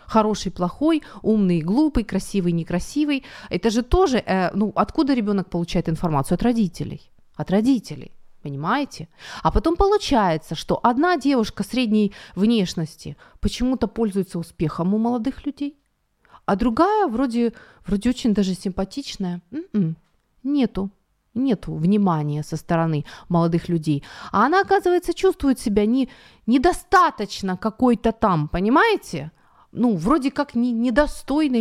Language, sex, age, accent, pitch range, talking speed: Ukrainian, female, 30-49, native, 175-255 Hz, 120 wpm